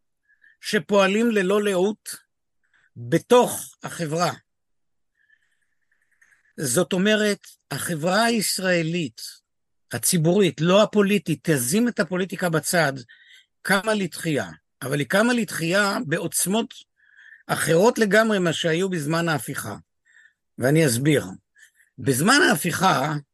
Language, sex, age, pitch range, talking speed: Hebrew, male, 50-69, 150-205 Hz, 85 wpm